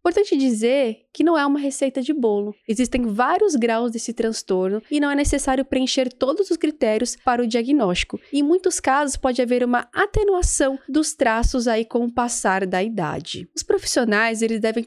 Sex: female